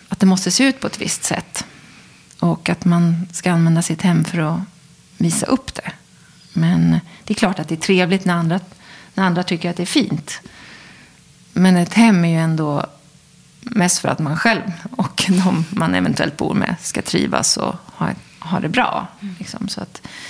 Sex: female